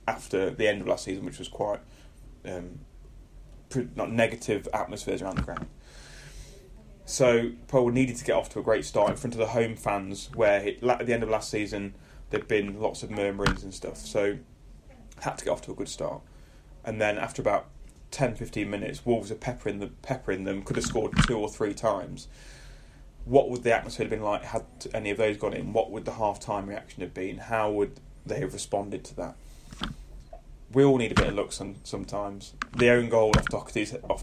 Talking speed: 205 wpm